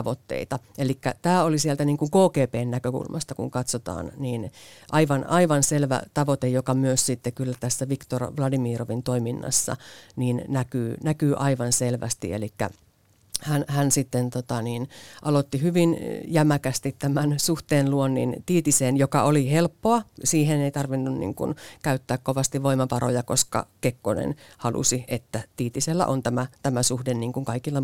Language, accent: Finnish, native